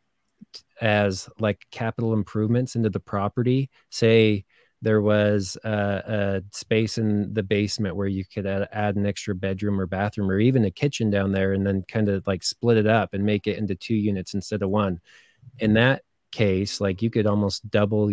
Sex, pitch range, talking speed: male, 100-110 Hz, 185 wpm